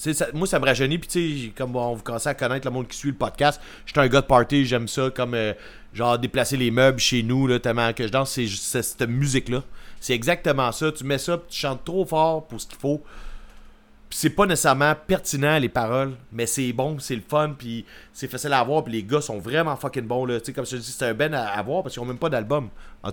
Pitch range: 120-150 Hz